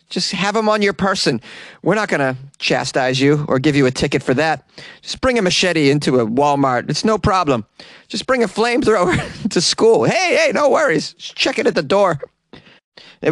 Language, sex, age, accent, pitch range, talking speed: English, male, 30-49, American, 125-170 Hz, 205 wpm